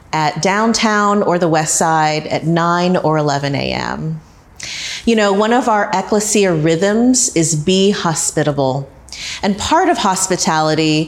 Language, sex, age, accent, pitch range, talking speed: English, female, 30-49, American, 160-210 Hz, 135 wpm